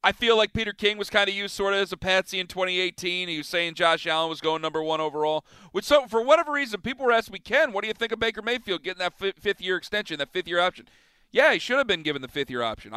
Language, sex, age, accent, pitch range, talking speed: English, male, 40-59, American, 165-205 Hz, 265 wpm